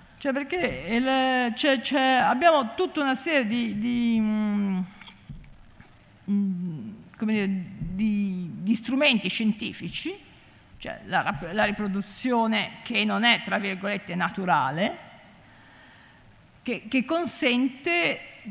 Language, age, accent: Italian, 50-69, native